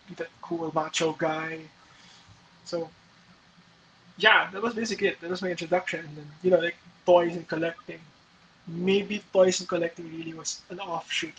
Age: 20-39